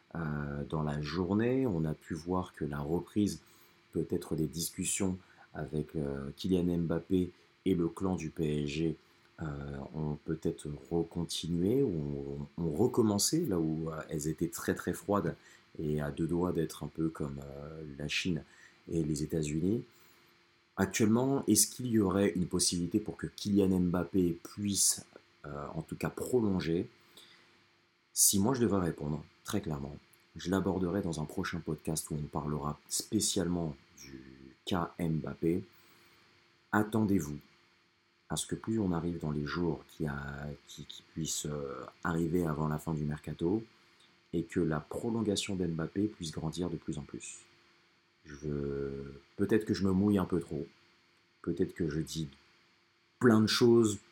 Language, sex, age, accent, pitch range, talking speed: French, male, 30-49, French, 75-95 Hz, 150 wpm